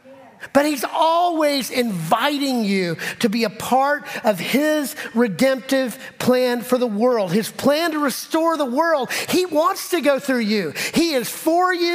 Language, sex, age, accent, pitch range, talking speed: English, male, 40-59, American, 185-260 Hz, 160 wpm